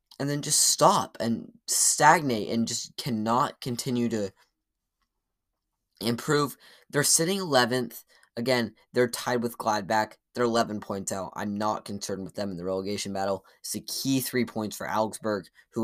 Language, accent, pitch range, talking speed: English, American, 110-135 Hz, 155 wpm